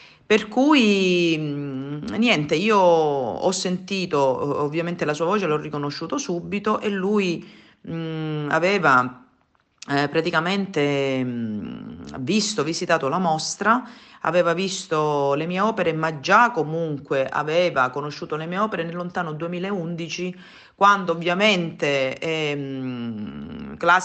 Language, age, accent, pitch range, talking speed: Italian, 40-59, native, 150-190 Hz, 105 wpm